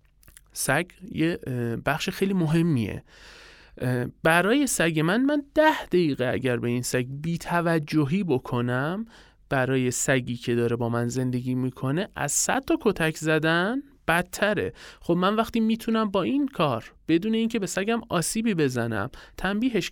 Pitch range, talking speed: 130-180 Hz, 135 wpm